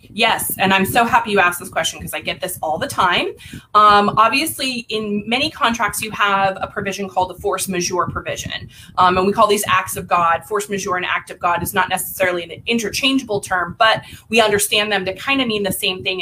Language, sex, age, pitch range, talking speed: English, female, 20-39, 190-250 Hz, 225 wpm